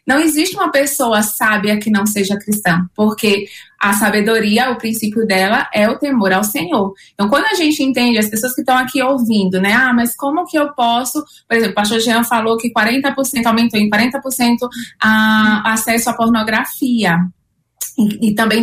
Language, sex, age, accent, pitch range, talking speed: Portuguese, female, 20-39, Brazilian, 205-250 Hz, 175 wpm